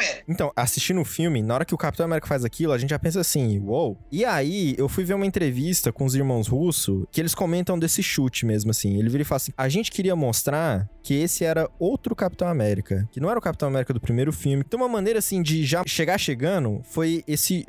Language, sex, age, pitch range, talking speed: Portuguese, male, 20-39, 130-175 Hz, 240 wpm